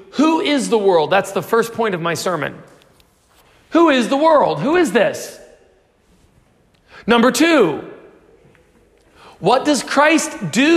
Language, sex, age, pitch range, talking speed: English, male, 40-59, 200-295 Hz, 135 wpm